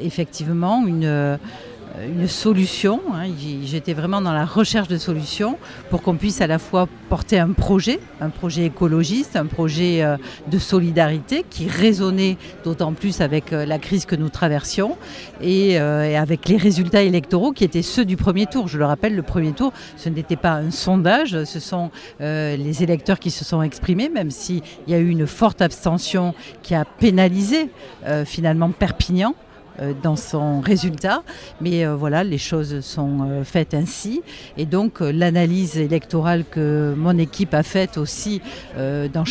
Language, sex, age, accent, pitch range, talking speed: French, female, 50-69, French, 150-190 Hz, 160 wpm